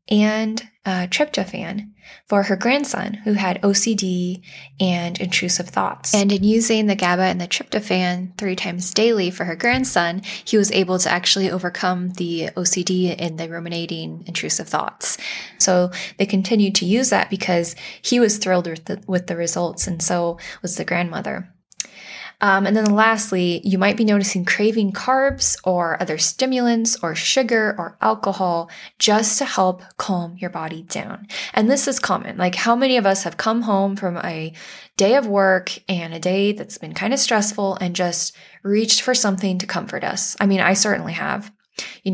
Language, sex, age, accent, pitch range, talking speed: English, female, 10-29, American, 180-215 Hz, 170 wpm